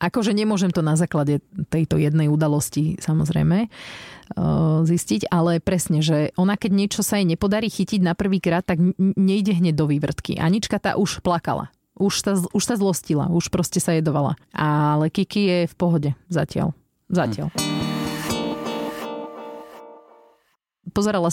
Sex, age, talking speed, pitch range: female, 30-49, 140 wpm, 165-195 Hz